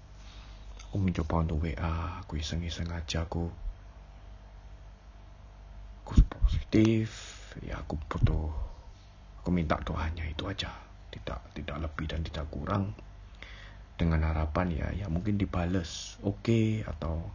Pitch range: 80-95 Hz